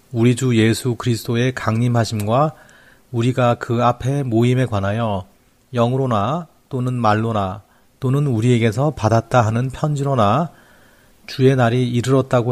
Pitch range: 110-130 Hz